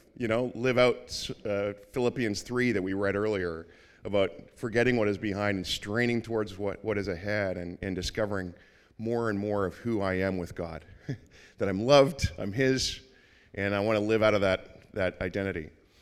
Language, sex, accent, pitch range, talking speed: English, male, American, 105-130 Hz, 185 wpm